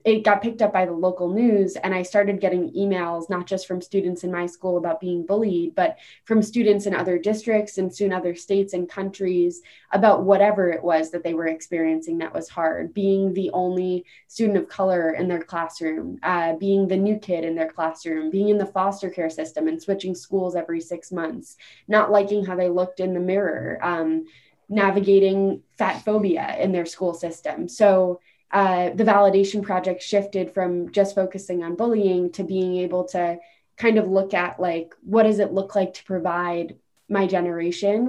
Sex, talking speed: female, 190 wpm